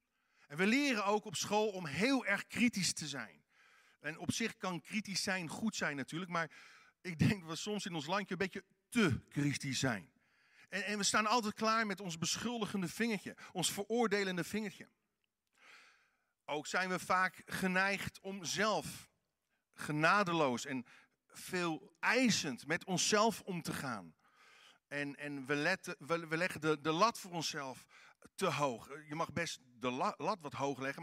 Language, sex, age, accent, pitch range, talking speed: Dutch, male, 50-69, Dutch, 160-215 Hz, 165 wpm